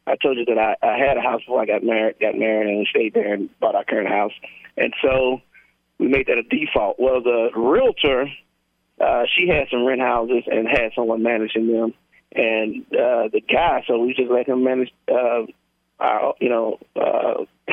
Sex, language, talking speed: male, English, 200 wpm